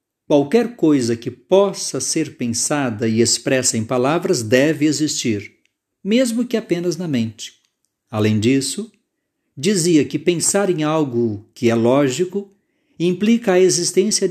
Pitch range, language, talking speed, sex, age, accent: 130-185 Hz, Portuguese, 125 wpm, male, 50-69, Brazilian